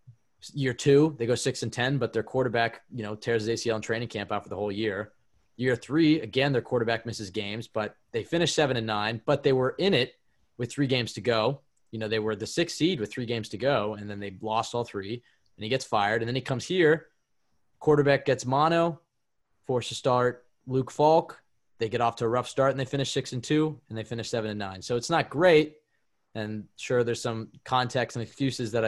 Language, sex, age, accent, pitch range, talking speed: English, male, 20-39, American, 110-140 Hz, 235 wpm